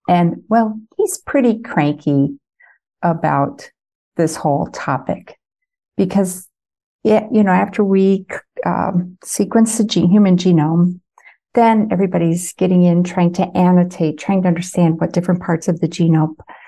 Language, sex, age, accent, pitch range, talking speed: English, female, 60-79, American, 165-225 Hz, 135 wpm